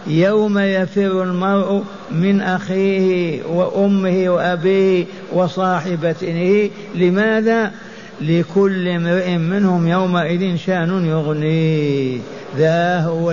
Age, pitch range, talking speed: 60-79, 170-200 Hz, 75 wpm